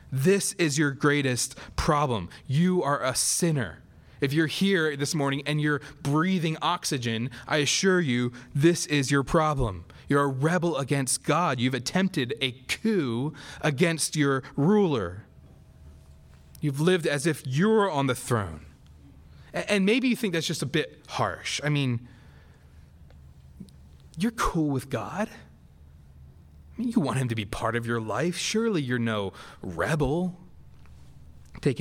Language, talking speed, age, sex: English, 140 wpm, 20-39, male